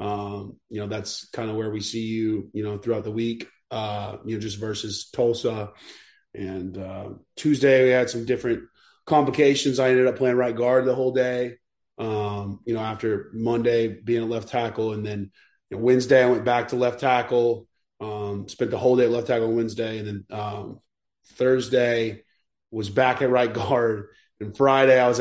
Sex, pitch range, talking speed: male, 105-125 Hz, 185 wpm